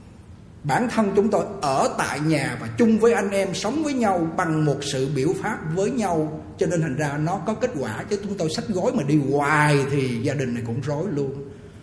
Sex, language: male, Vietnamese